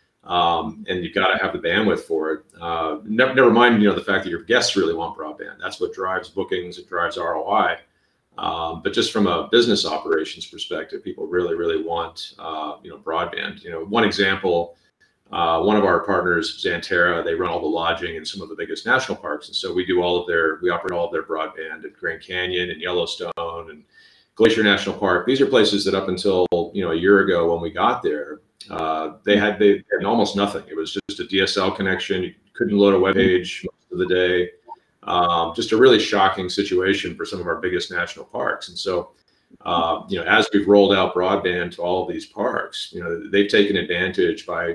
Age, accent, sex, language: 40-59, American, male, English